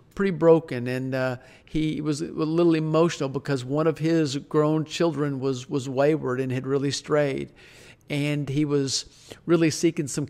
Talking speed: 165 wpm